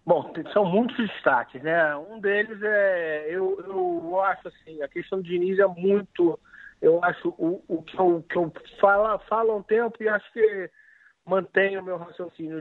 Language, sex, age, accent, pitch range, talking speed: Portuguese, male, 50-69, Brazilian, 160-220 Hz, 180 wpm